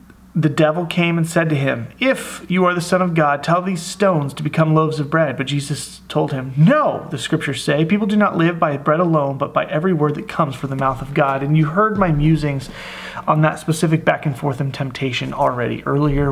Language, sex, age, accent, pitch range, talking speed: English, male, 30-49, American, 145-170 Hz, 230 wpm